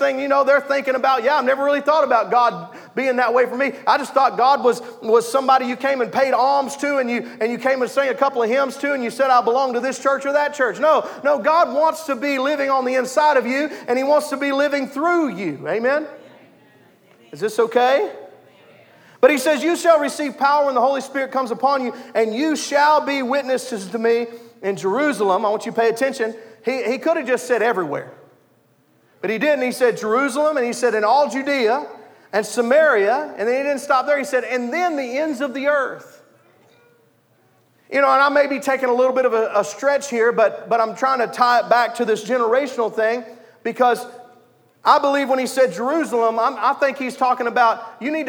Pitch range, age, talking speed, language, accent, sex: 240-280 Hz, 40-59, 230 wpm, English, American, male